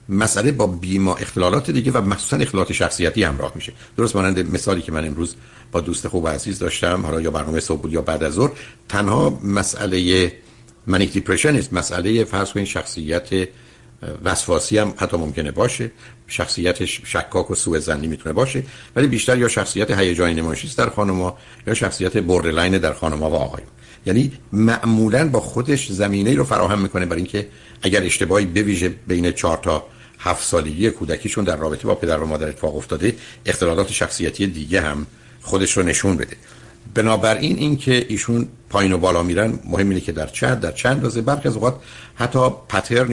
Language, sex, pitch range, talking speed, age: Persian, male, 85-115 Hz, 170 wpm, 60-79